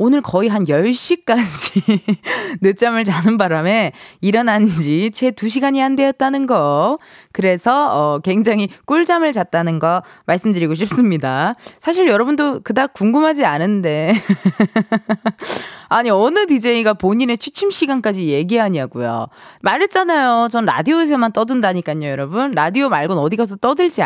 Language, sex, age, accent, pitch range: Korean, female, 20-39, native, 175-265 Hz